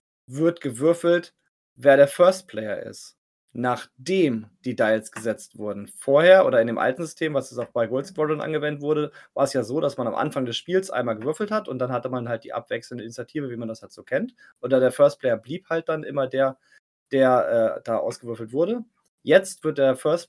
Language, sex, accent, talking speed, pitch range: German, male, German, 210 wpm, 125-180 Hz